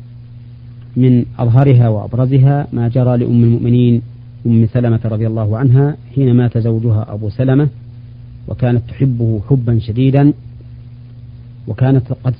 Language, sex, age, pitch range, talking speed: Arabic, male, 40-59, 115-130 Hz, 110 wpm